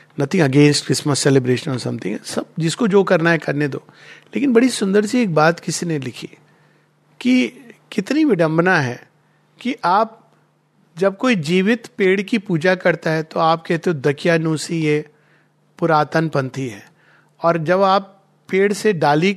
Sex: male